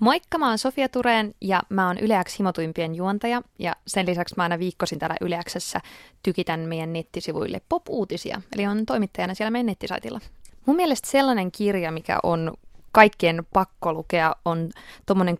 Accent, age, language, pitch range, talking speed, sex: native, 20-39, Finnish, 170-210 Hz, 155 wpm, female